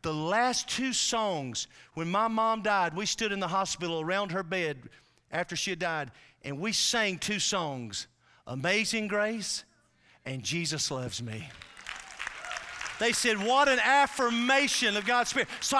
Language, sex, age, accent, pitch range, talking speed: English, male, 40-59, American, 145-195 Hz, 150 wpm